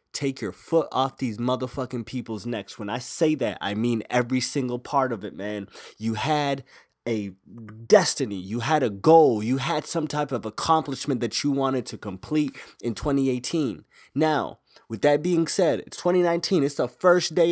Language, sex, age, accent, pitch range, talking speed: English, male, 20-39, American, 115-150 Hz, 180 wpm